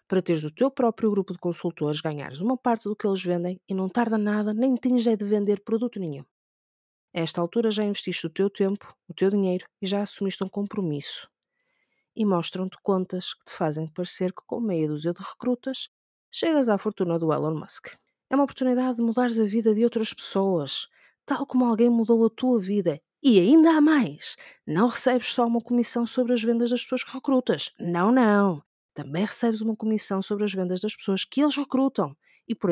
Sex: female